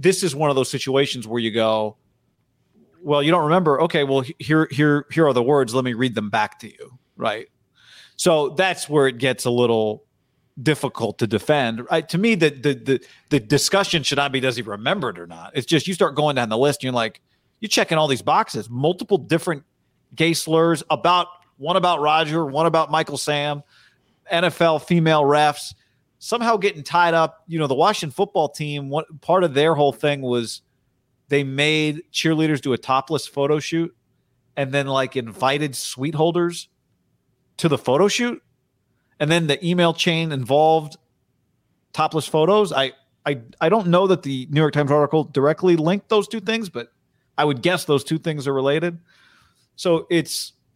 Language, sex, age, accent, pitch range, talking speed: English, male, 40-59, American, 130-165 Hz, 185 wpm